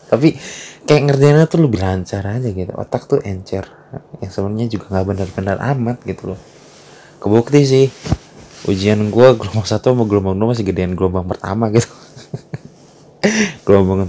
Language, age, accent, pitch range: Indonesian, 20-39, native, 95-120 Hz